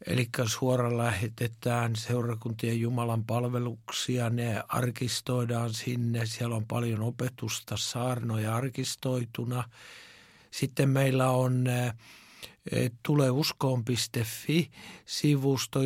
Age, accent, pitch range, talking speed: 60-79, native, 120-130 Hz, 70 wpm